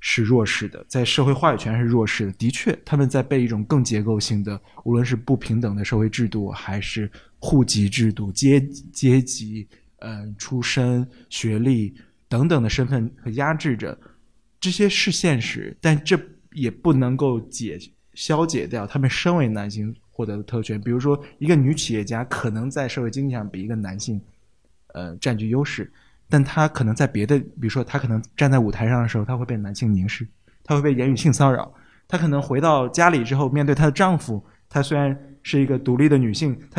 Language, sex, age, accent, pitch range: Chinese, male, 20-39, native, 110-140 Hz